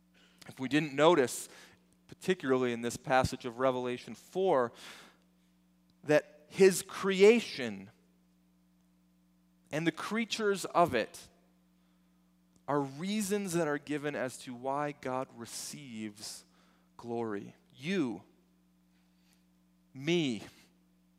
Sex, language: male, English